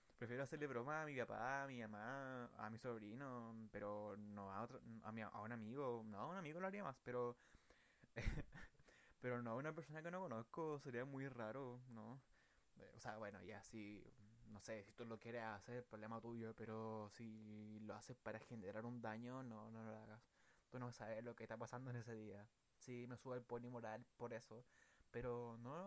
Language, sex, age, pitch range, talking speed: Spanish, male, 20-39, 110-140 Hz, 205 wpm